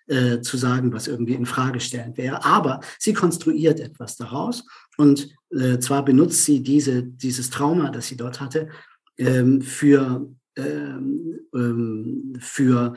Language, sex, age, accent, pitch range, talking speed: German, male, 50-69, German, 125-150 Hz, 145 wpm